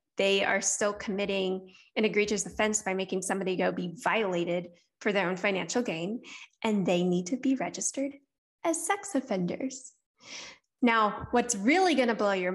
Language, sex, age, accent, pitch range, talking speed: English, female, 10-29, American, 190-245 Hz, 165 wpm